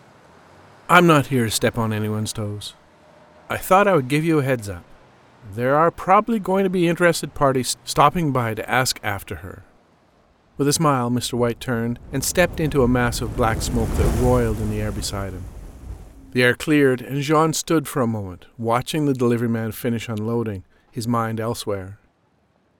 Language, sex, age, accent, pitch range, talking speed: English, male, 50-69, American, 105-135 Hz, 185 wpm